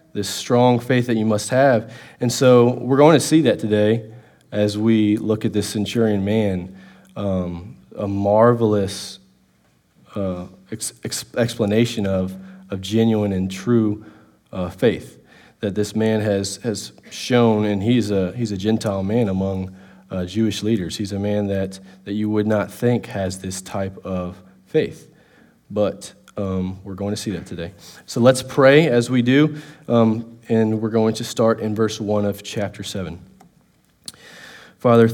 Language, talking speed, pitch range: English, 160 wpm, 95-115 Hz